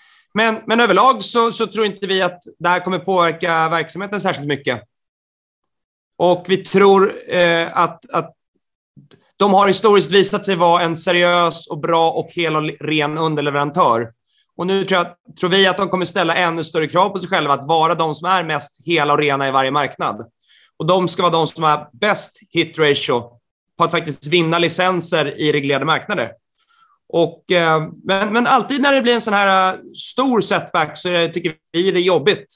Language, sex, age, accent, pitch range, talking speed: Swedish, male, 30-49, native, 160-195 Hz, 190 wpm